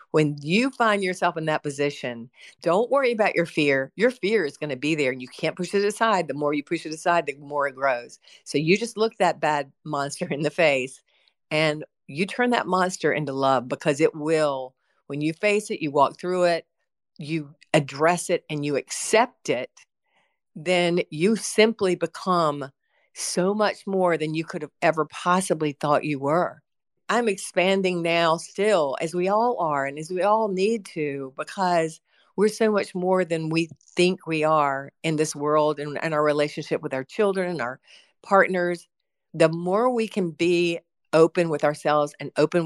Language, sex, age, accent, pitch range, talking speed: English, female, 50-69, American, 150-185 Hz, 190 wpm